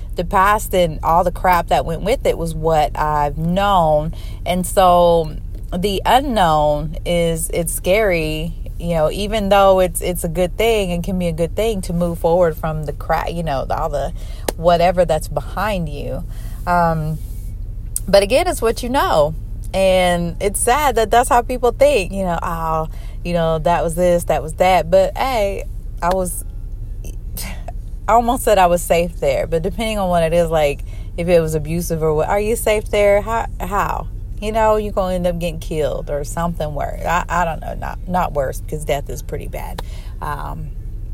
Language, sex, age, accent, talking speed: English, female, 30-49, American, 190 wpm